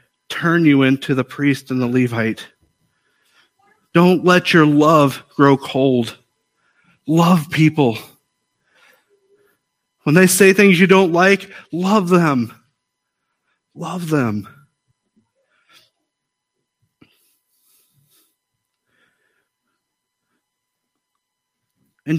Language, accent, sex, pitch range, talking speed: English, American, male, 145-195 Hz, 75 wpm